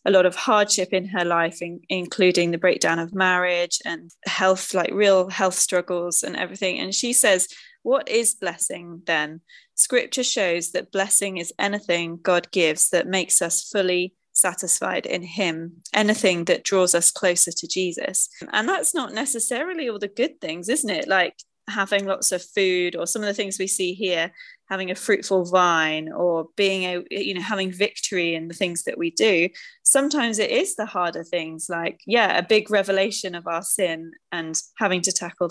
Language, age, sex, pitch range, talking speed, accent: English, 20-39, female, 175-215 Hz, 180 wpm, British